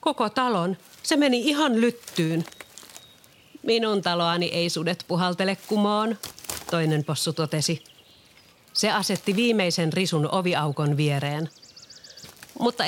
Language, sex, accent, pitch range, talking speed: Finnish, female, native, 155-205 Hz, 100 wpm